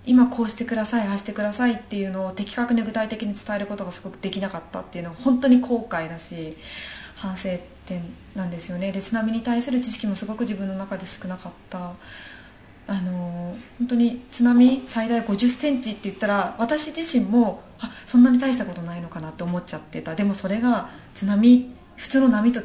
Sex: female